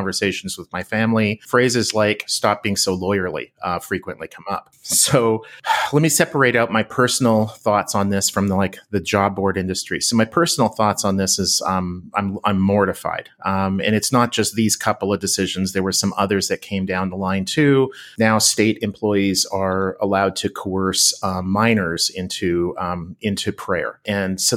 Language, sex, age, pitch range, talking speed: English, male, 40-59, 100-115 Hz, 185 wpm